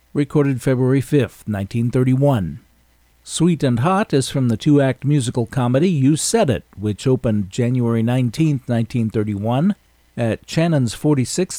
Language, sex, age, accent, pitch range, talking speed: English, male, 50-69, American, 115-150 Hz, 120 wpm